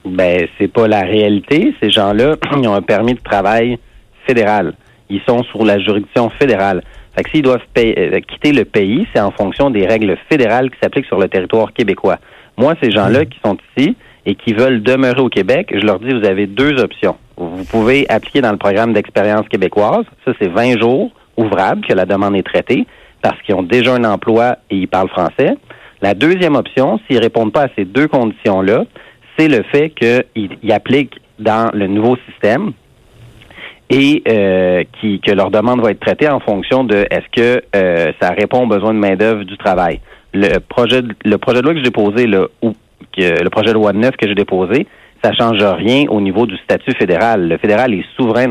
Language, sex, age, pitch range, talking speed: French, male, 40-59, 100-125 Hz, 205 wpm